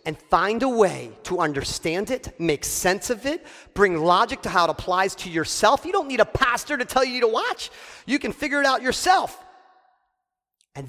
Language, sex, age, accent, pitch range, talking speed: English, male, 40-59, American, 160-225 Hz, 200 wpm